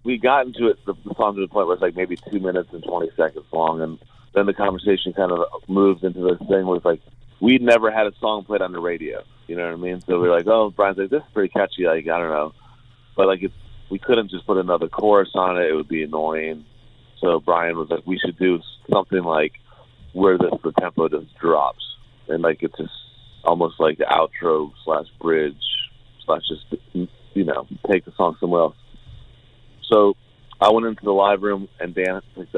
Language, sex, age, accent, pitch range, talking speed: English, male, 30-49, American, 85-115 Hz, 220 wpm